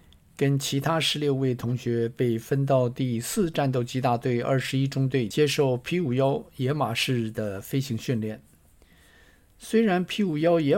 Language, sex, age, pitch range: Chinese, male, 50-69, 120-145 Hz